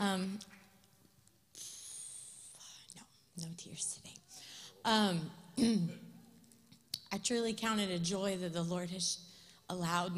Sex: female